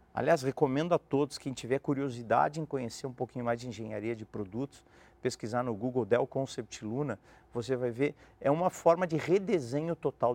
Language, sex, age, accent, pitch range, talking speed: Portuguese, male, 50-69, Brazilian, 115-145 Hz, 180 wpm